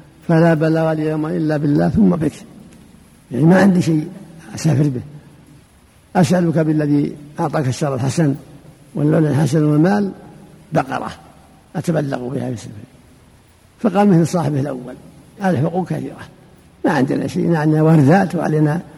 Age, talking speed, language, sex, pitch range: 60-79, 125 wpm, Arabic, male, 150-185 Hz